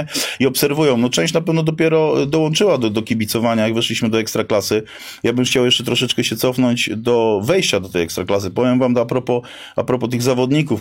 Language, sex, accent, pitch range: Polish, male, native, 110-125 Hz